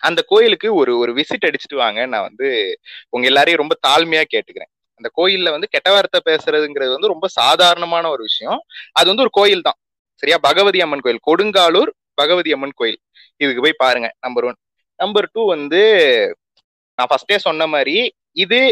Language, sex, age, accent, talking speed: Tamil, male, 20-39, native, 155 wpm